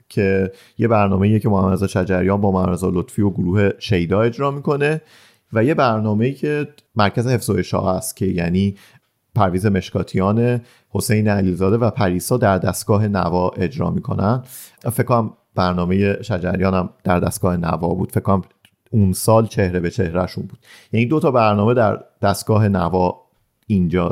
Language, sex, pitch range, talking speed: Persian, male, 95-115 Hz, 150 wpm